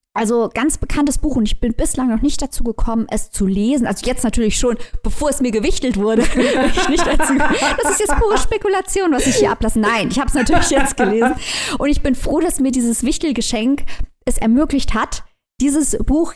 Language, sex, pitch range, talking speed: German, female, 205-275 Hz, 195 wpm